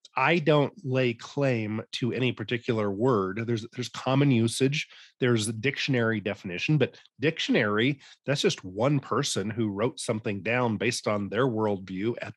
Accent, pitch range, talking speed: American, 115-140 Hz, 150 wpm